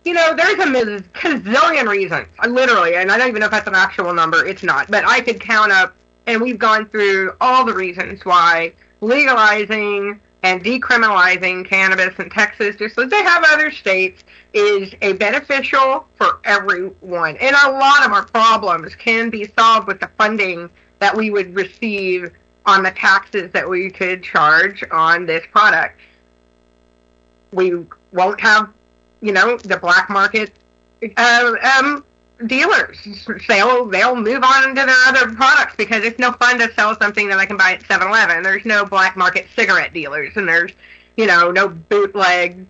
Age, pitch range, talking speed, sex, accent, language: 40-59, 185-240 Hz, 165 wpm, female, American, English